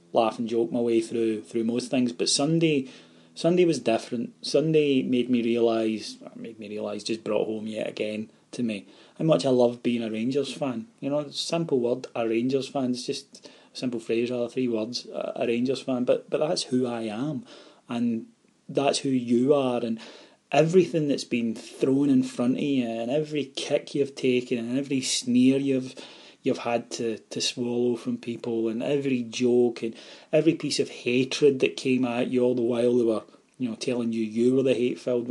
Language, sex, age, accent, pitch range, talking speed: English, male, 30-49, British, 115-135 Hz, 190 wpm